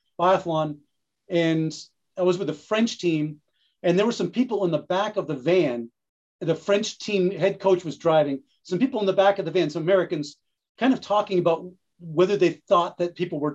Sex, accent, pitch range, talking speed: male, American, 170-215 Hz, 205 wpm